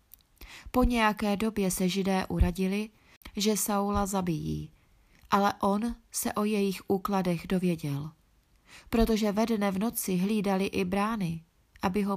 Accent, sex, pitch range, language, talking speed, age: native, female, 185-215 Hz, Czech, 125 wpm, 30-49